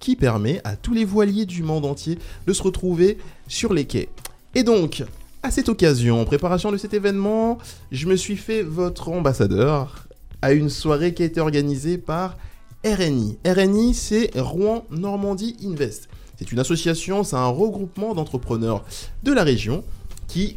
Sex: male